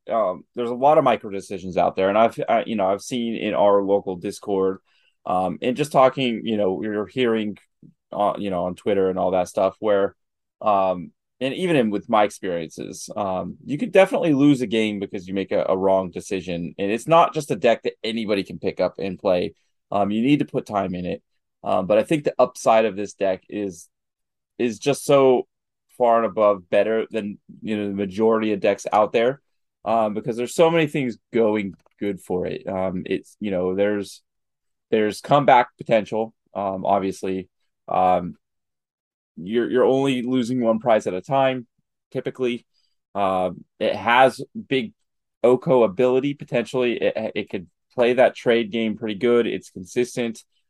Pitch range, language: 95-125 Hz, English